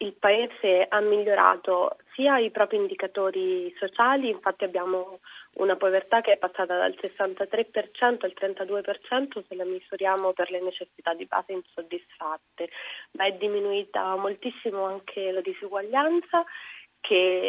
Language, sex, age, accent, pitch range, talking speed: Italian, female, 20-39, native, 185-225 Hz, 125 wpm